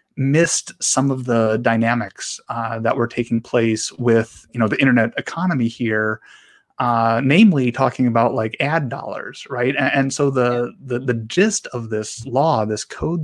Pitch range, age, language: 115-135 Hz, 30-49, English